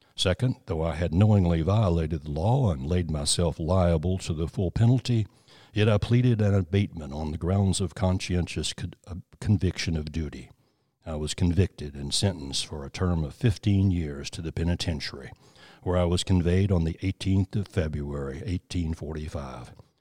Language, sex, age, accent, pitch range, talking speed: English, male, 60-79, American, 80-100 Hz, 160 wpm